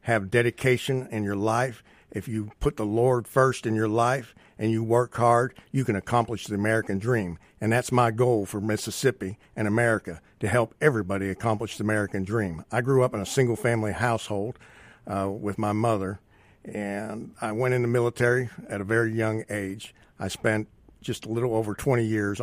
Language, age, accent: Japanese, 50-69, American